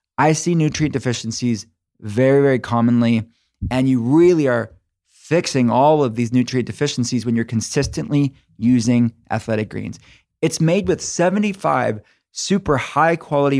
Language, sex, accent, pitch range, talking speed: English, male, American, 120-145 Hz, 130 wpm